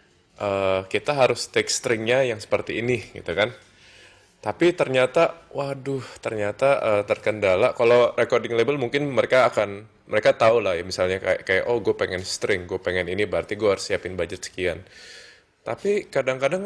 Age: 20-39